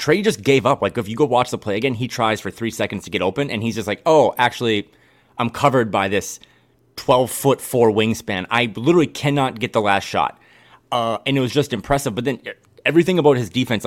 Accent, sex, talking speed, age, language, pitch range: American, male, 230 wpm, 30-49, English, 110-135 Hz